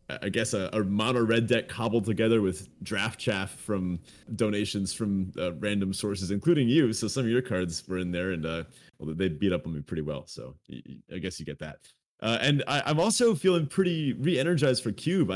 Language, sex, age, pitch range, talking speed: English, male, 30-49, 100-135 Hz, 210 wpm